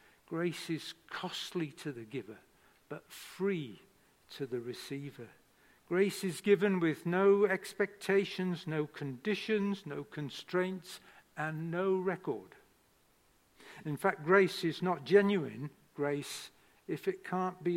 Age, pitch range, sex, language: 60-79, 150-190 Hz, male, English